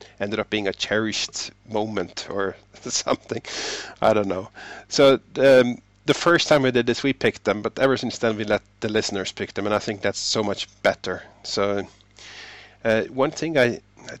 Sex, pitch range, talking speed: male, 105-125 Hz, 190 wpm